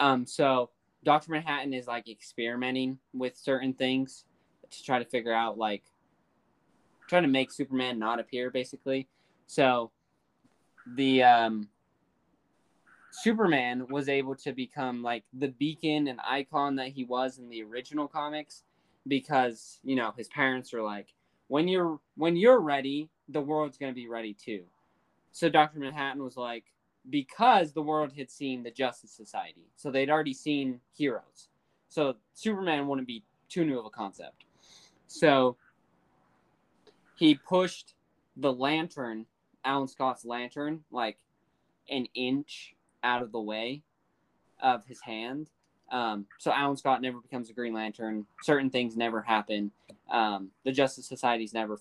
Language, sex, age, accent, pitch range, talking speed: English, male, 10-29, American, 120-145 Hz, 145 wpm